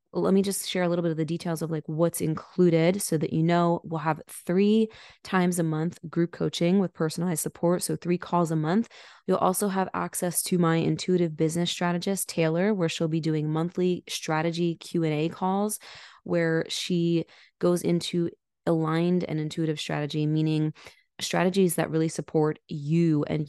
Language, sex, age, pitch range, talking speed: English, female, 20-39, 155-180 Hz, 170 wpm